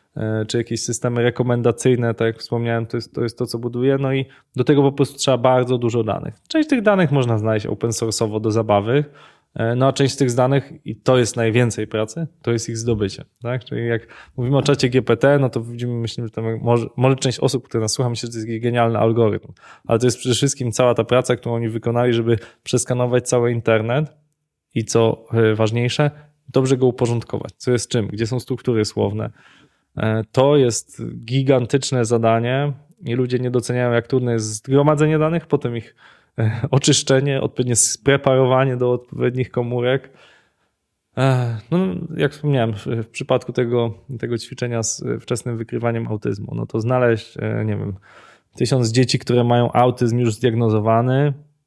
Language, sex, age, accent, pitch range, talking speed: Polish, male, 20-39, native, 115-130 Hz, 170 wpm